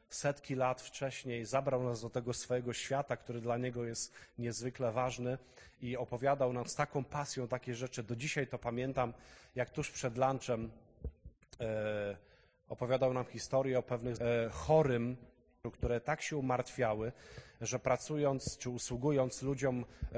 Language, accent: Polish, native